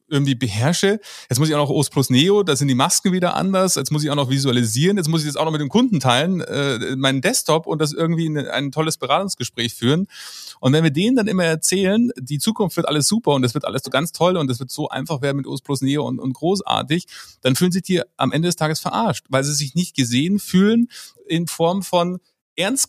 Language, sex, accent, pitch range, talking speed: German, male, German, 140-175 Hz, 245 wpm